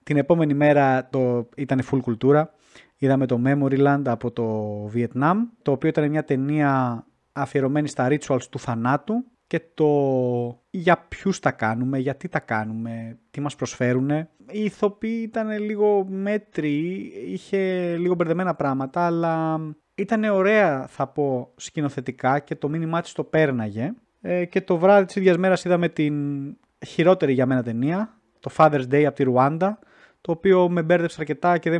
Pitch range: 135-185 Hz